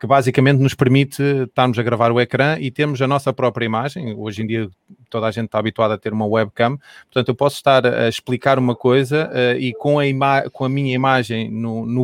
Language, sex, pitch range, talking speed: Portuguese, male, 110-130 Hz, 210 wpm